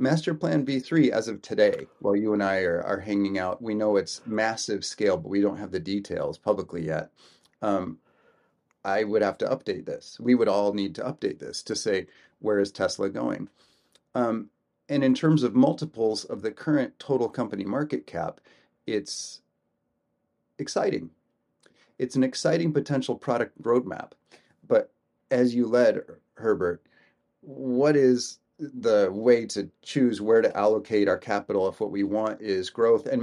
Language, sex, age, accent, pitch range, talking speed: English, male, 30-49, American, 100-150 Hz, 165 wpm